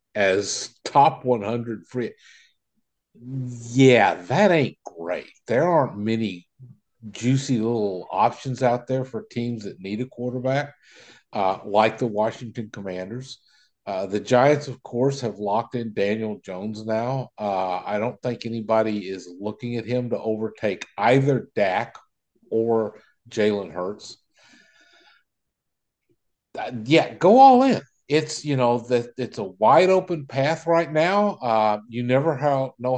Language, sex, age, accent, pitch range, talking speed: English, male, 50-69, American, 105-135 Hz, 135 wpm